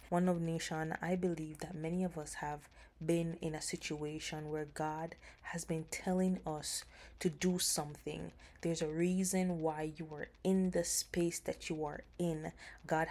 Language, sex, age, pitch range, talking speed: English, female, 20-39, 160-185 Hz, 170 wpm